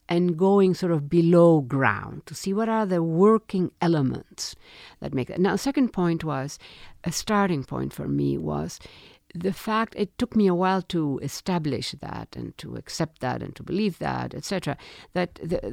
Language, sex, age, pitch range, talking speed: English, female, 60-79, 155-200 Hz, 180 wpm